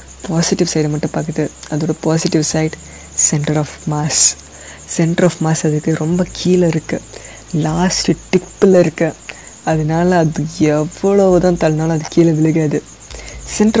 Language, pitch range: Tamil, 150-175 Hz